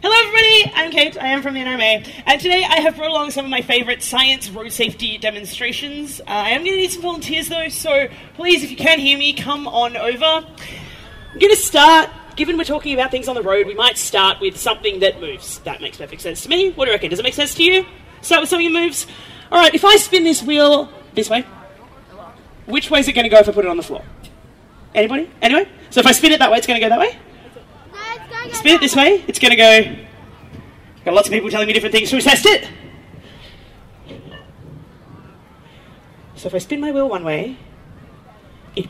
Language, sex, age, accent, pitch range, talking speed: English, female, 30-49, Australian, 215-320 Hz, 230 wpm